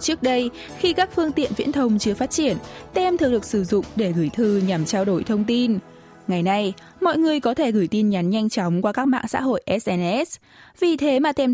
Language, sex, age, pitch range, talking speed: Vietnamese, female, 10-29, 195-265 Hz, 235 wpm